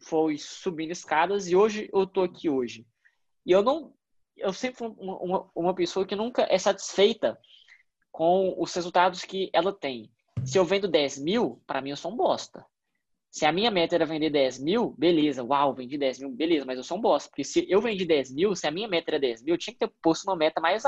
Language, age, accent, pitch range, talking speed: Portuguese, 10-29, Brazilian, 150-195 Hz, 230 wpm